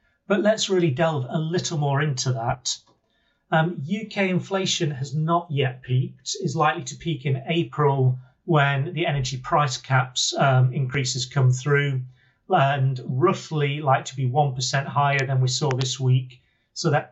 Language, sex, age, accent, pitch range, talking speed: English, male, 40-59, British, 130-155 Hz, 160 wpm